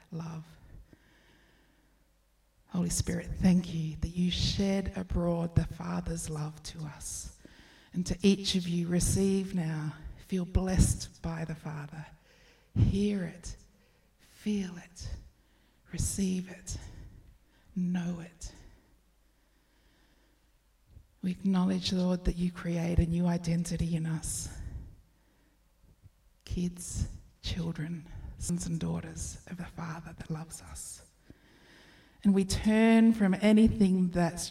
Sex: female